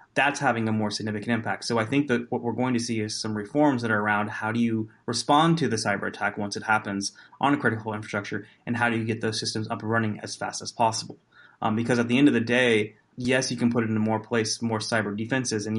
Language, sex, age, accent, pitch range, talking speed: English, male, 20-39, American, 110-120 Hz, 260 wpm